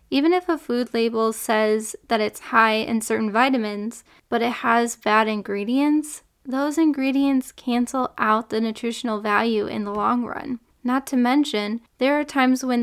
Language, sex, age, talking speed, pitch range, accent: English, female, 10-29, 165 wpm, 220-265 Hz, American